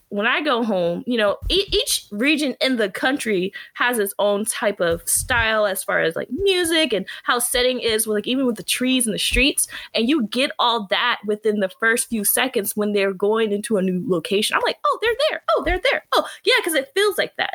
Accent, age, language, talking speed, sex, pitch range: American, 20-39, English, 235 wpm, female, 205-255 Hz